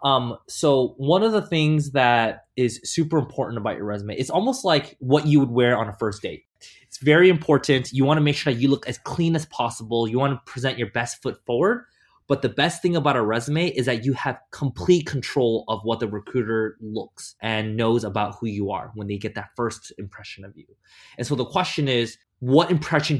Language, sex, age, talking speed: English, male, 20-39, 220 wpm